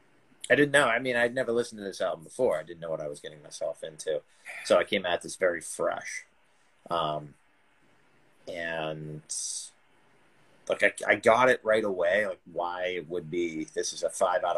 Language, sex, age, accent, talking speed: English, male, 30-49, American, 195 wpm